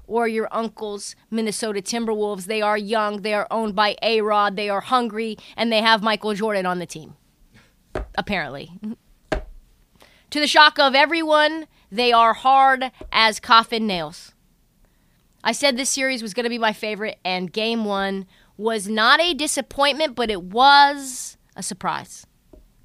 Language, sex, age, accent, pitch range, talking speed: English, female, 30-49, American, 200-265 Hz, 150 wpm